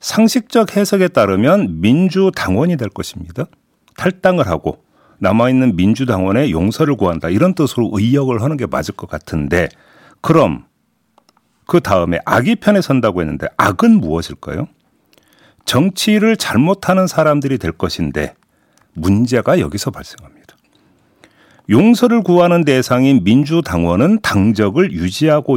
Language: Korean